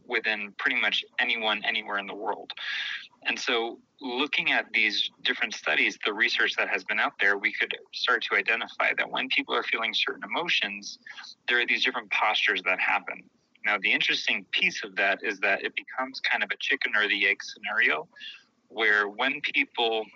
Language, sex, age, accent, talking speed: English, male, 30-49, American, 185 wpm